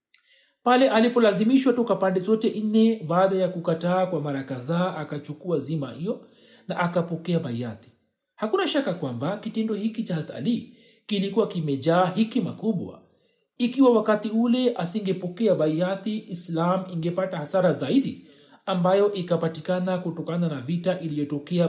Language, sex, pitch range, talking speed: Swahili, male, 155-210 Hz, 120 wpm